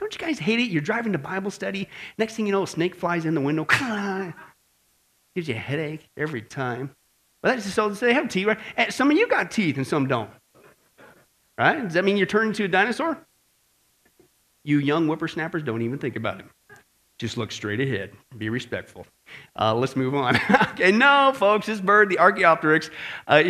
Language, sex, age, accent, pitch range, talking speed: English, male, 40-59, American, 130-210 Hz, 205 wpm